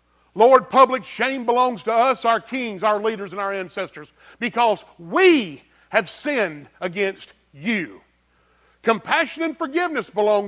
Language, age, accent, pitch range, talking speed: English, 40-59, American, 190-250 Hz, 130 wpm